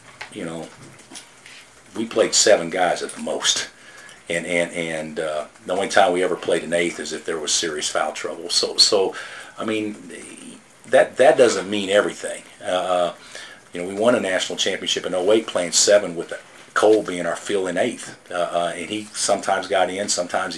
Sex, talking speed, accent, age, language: male, 185 wpm, American, 50-69, English